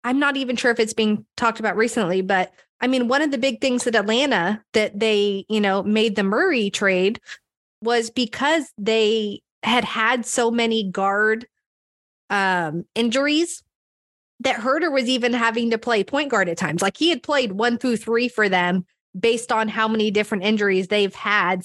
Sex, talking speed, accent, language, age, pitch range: female, 185 wpm, American, English, 20-39, 195-235 Hz